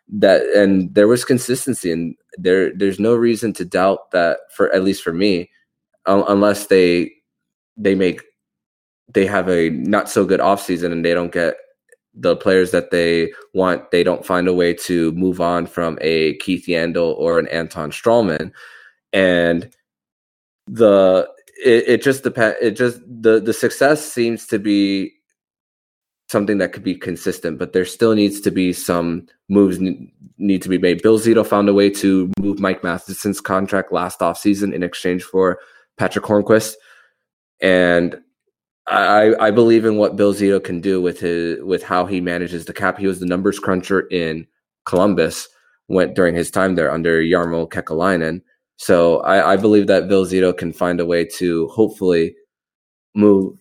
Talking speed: 170 wpm